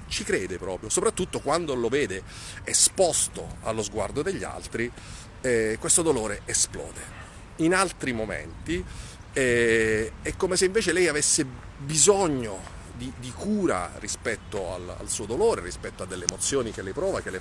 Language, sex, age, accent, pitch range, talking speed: Italian, male, 40-59, native, 110-185 Hz, 150 wpm